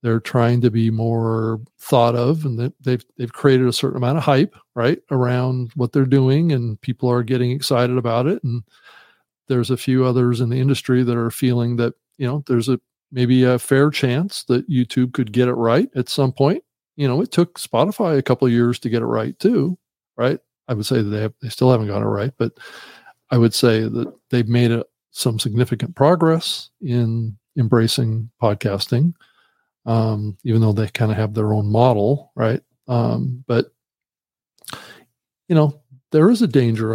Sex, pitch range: male, 115-135 Hz